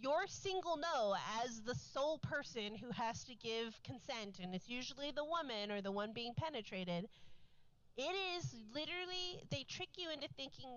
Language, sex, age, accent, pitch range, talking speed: English, female, 30-49, American, 195-240 Hz, 165 wpm